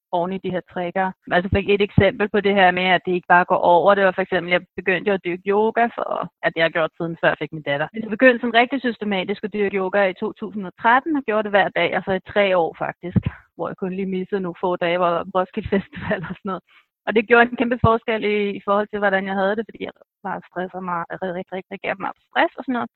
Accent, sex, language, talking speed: native, female, Danish, 265 wpm